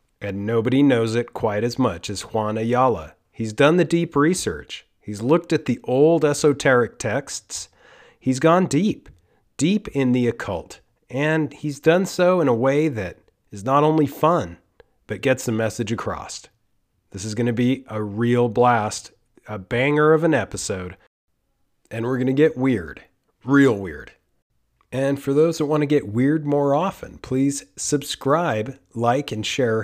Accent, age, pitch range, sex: American, 40-59, 110-145 Hz, male